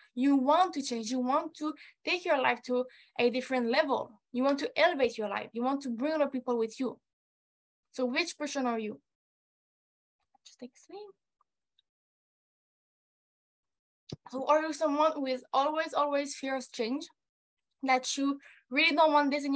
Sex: female